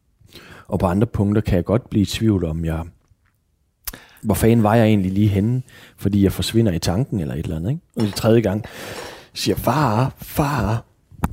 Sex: male